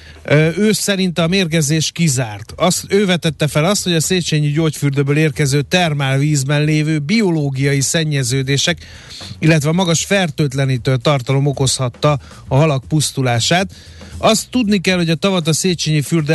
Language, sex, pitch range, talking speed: Hungarian, male, 135-160 Hz, 135 wpm